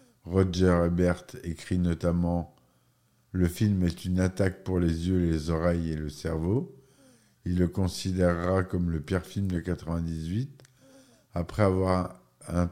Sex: male